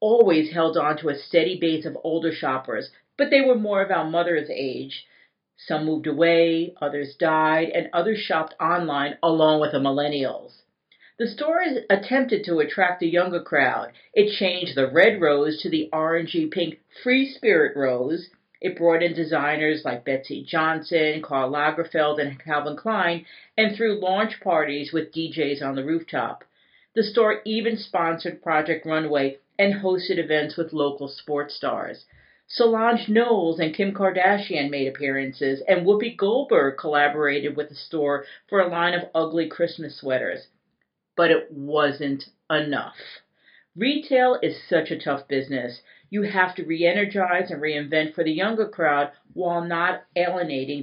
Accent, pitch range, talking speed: American, 150-185 Hz, 150 wpm